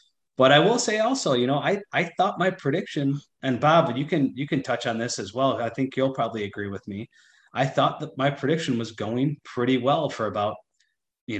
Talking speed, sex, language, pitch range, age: 220 wpm, male, English, 110-130 Hz, 30-49